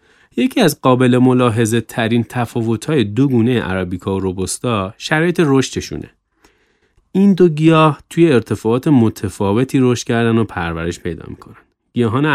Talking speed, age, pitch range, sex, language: 120 wpm, 30-49, 95-130 Hz, male, Persian